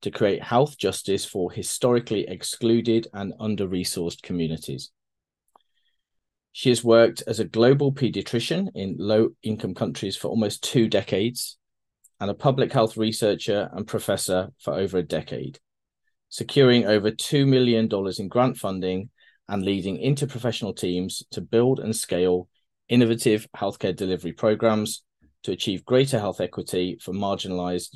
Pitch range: 95-120 Hz